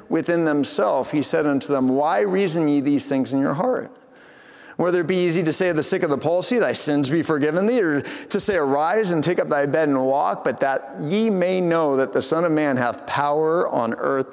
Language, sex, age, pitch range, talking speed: English, male, 40-59, 140-195 Hz, 235 wpm